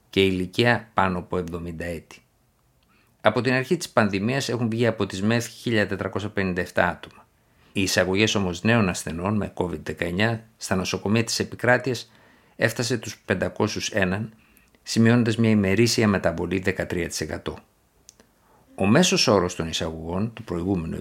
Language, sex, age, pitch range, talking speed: Greek, male, 50-69, 95-120 Hz, 125 wpm